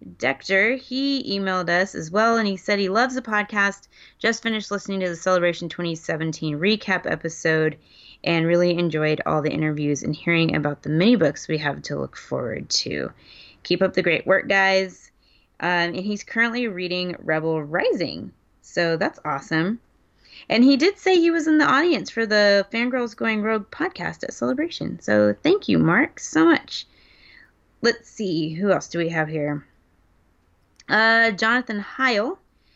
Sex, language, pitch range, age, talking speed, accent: female, English, 160-230 Hz, 20-39, 165 wpm, American